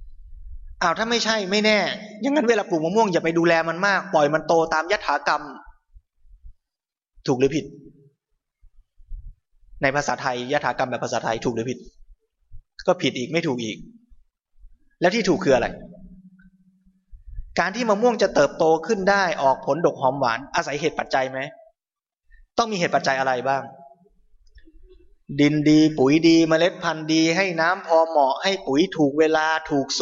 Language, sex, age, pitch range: Thai, male, 20-39, 135-185 Hz